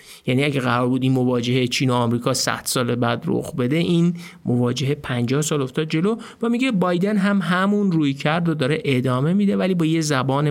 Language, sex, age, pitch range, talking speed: Persian, male, 50-69, 125-180 Hz, 200 wpm